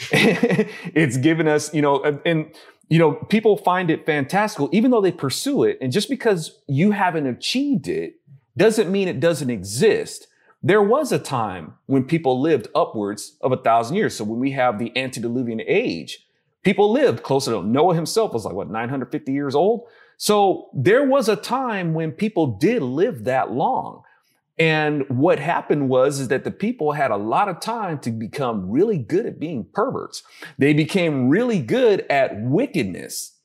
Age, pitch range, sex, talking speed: 30-49, 135-200 Hz, male, 175 wpm